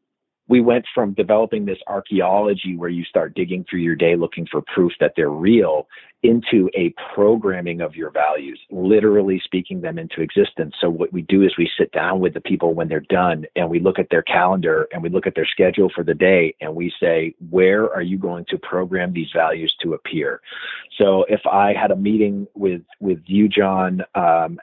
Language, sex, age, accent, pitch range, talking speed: English, male, 40-59, American, 90-105 Hz, 200 wpm